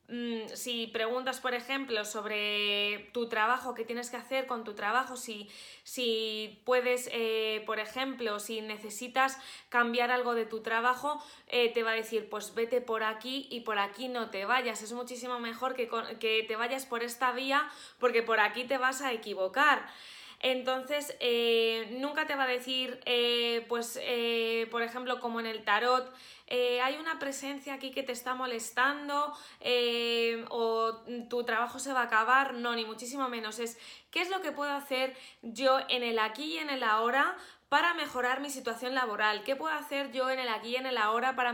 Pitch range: 225-255 Hz